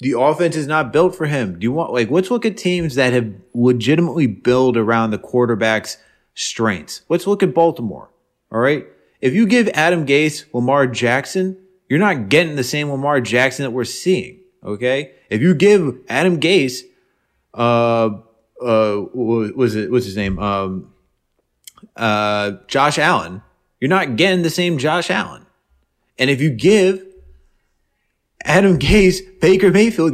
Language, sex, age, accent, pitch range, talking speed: English, male, 30-49, American, 110-165 Hz, 155 wpm